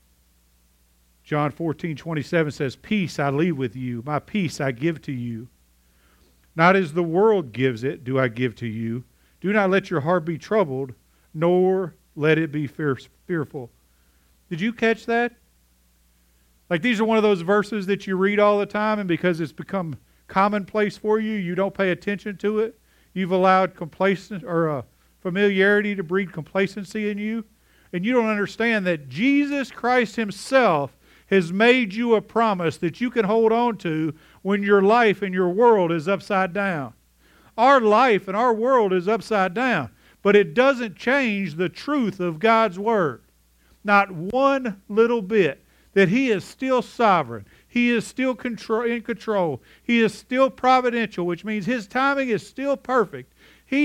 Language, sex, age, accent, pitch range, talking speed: English, male, 50-69, American, 160-225 Hz, 170 wpm